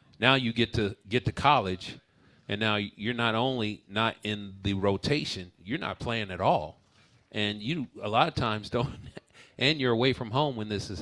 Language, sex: English, male